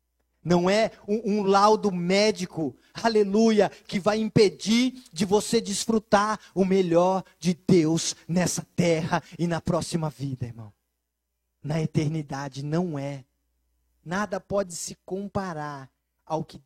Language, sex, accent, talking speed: Portuguese, male, Brazilian, 120 wpm